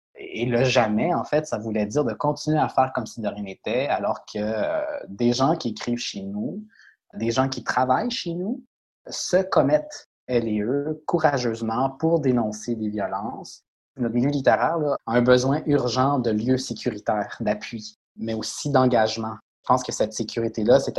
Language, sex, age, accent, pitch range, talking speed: French, male, 20-39, Canadian, 110-135 Hz, 185 wpm